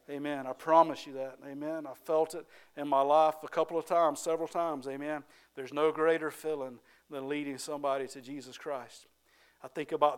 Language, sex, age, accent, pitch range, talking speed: English, male, 50-69, American, 135-160 Hz, 190 wpm